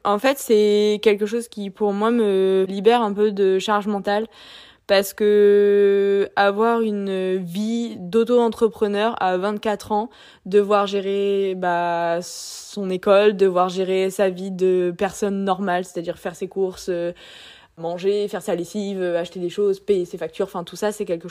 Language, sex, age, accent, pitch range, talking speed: French, female, 20-39, French, 185-210 Hz, 155 wpm